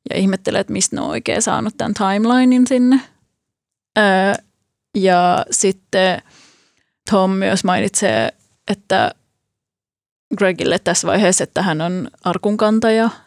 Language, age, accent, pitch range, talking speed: Finnish, 20-39, native, 180-225 Hz, 115 wpm